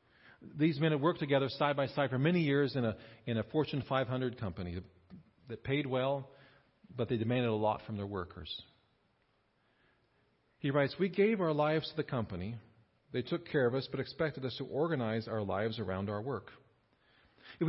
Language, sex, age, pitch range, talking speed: English, male, 40-59, 110-145 Hz, 180 wpm